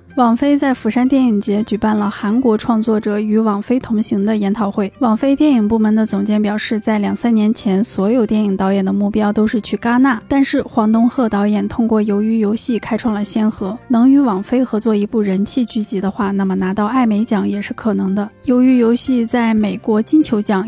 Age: 20-39